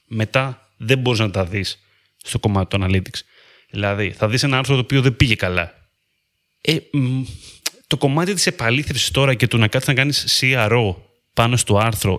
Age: 30-49